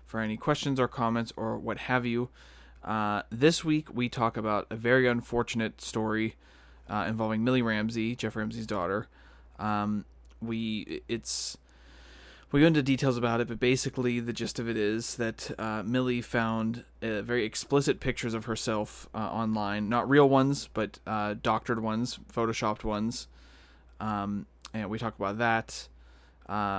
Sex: male